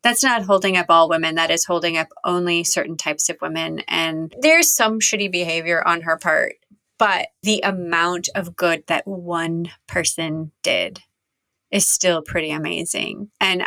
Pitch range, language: 170-210 Hz, English